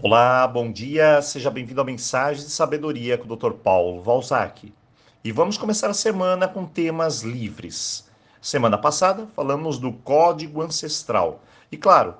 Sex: male